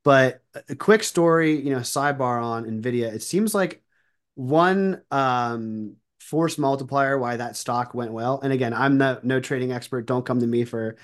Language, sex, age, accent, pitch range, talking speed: English, male, 30-49, American, 125-145 Hz, 180 wpm